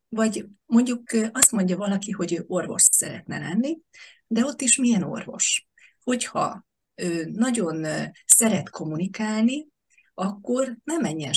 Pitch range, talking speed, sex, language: 175-225 Hz, 115 wpm, female, Hungarian